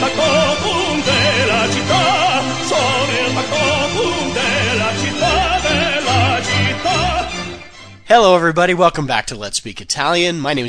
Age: 30-49